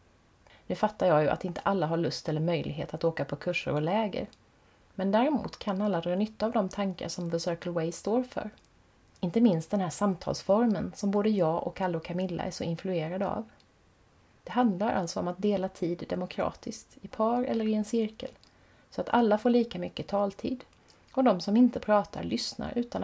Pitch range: 165-220 Hz